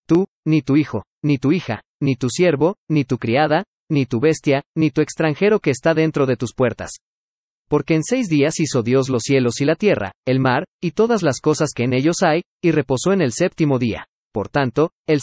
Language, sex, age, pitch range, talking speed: Spanish, male, 40-59, 130-165 Hz, 215 wpm